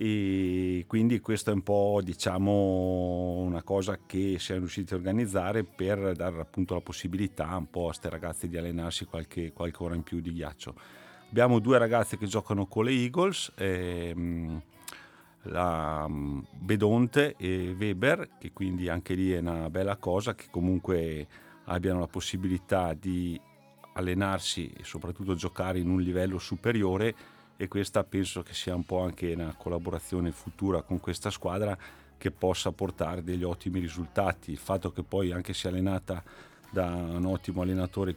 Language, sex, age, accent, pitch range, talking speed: Italian, male, 40-59, native, 85-95 Hz, 155 wpm